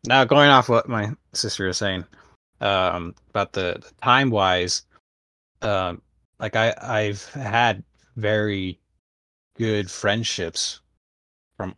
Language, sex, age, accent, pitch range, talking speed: English, male, 20-39, American, 85-105 Hz, 105 wpm